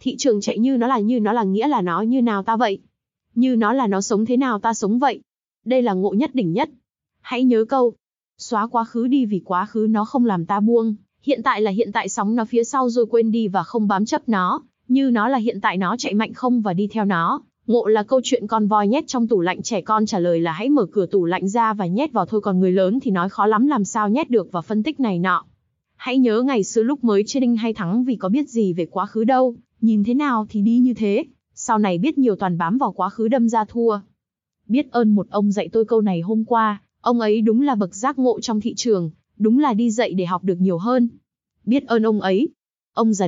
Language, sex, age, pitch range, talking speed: Vietnamese, female, 20-39, 200-245 Hz, 265 wpm